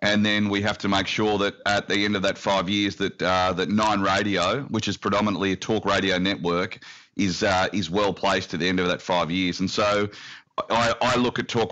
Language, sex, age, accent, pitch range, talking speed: English, male, 40-59, Australian, 95-110 Hz, 230 wpm